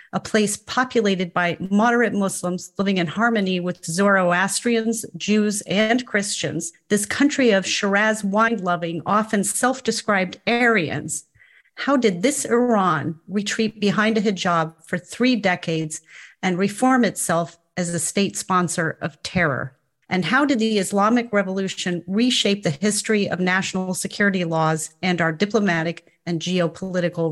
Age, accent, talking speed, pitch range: 40-59, American, 130 wpm, 175-220 Hz